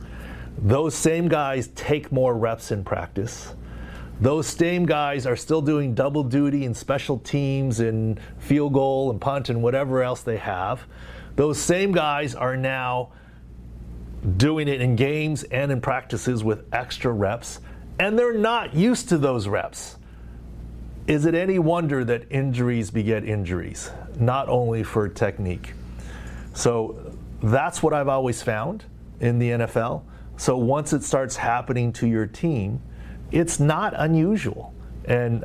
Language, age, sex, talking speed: English, 40-59, male, 140 wpm